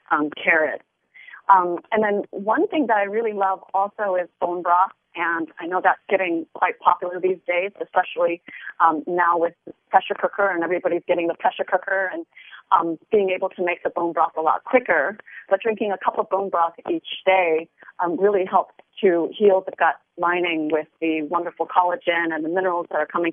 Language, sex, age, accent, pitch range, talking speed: English, female, 30-49, American, 165-195 Hz, 195 wpm